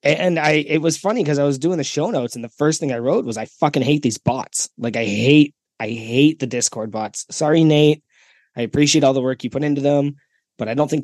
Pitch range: 115-145 Hz